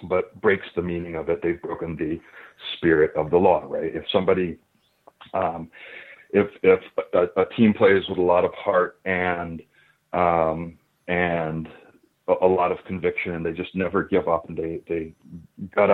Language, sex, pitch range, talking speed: English, male, 80-100 Hz, 175 wpm